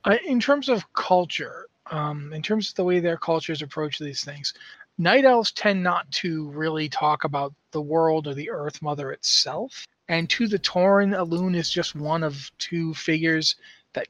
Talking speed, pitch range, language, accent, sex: 180 wpm, 155-190 Hz, English, American, male